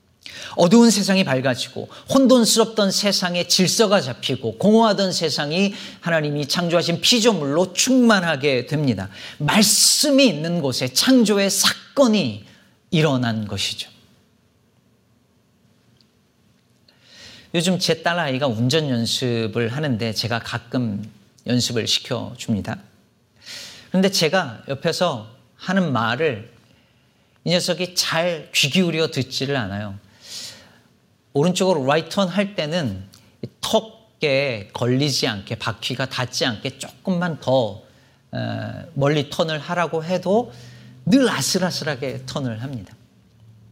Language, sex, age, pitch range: Korean, male, 40-59, 120-180 Hz